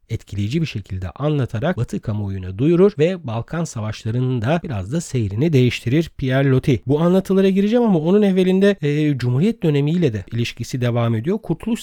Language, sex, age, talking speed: Turkish, male, 40-59, 155 wpm